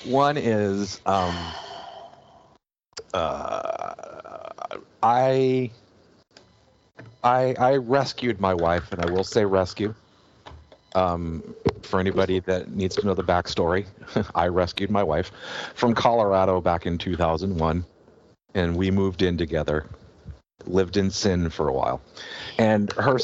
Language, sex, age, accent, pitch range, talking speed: English, male, 50-69, American, 90-110 Hz, 120 wpm